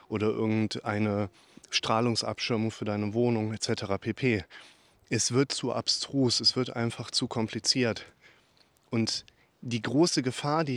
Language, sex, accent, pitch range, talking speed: German, male, German, 110-125 Hz, 125 wpm